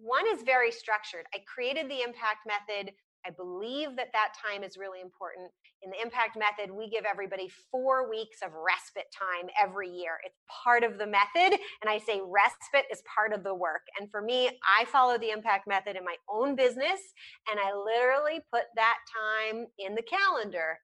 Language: English